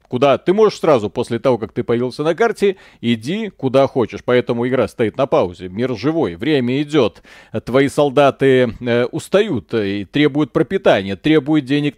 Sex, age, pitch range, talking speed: male, 30-49, 120-150 Hz, 155 wpm